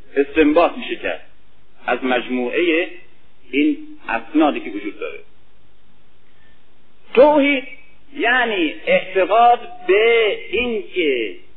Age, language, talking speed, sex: 50-69, Persian, 80 wpm, male